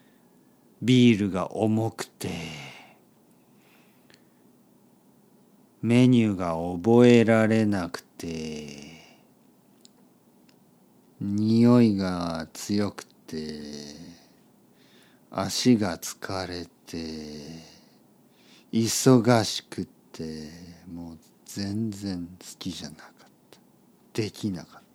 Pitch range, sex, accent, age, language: 85-120 Hz, male, native, 50-69, Japanese